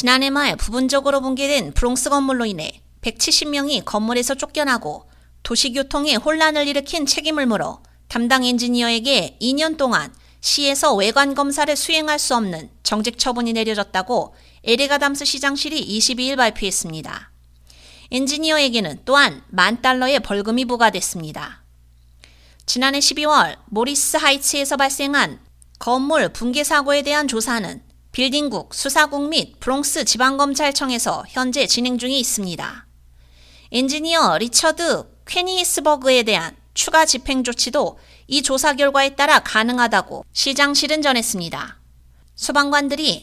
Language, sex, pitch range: Korean, female, 220-290 Hz